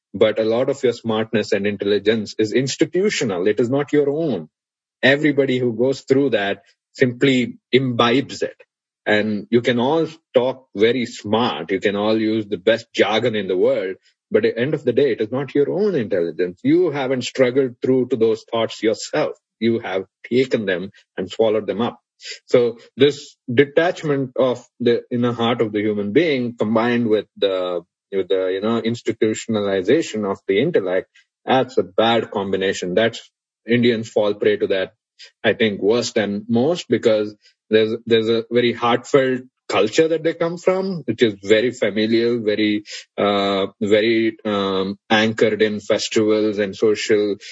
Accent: Indian